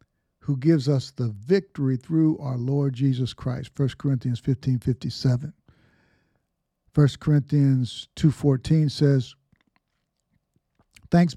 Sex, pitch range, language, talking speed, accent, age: male, 125-160 Hz, English, 105 wpm, American, 50-69